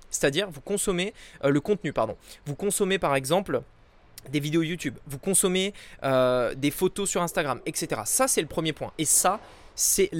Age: 20-39